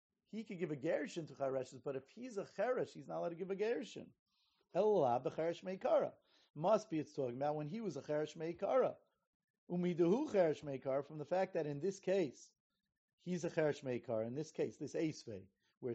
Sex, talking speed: male, 200 wpm